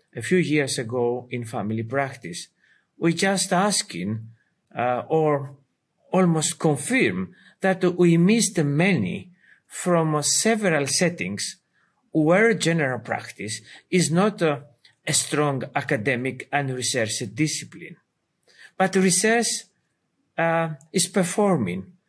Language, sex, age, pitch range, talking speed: English, male, 50-69, 140-185 Hz, 105 wpm